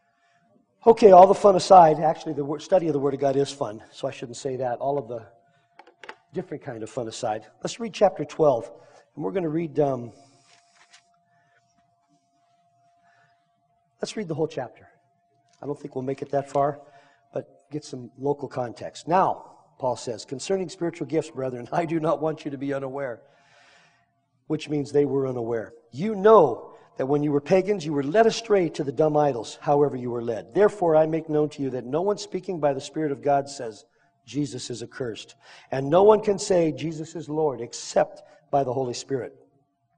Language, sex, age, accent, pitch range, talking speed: English, male, 50-69, American, 140-175 Hz, 190 wpm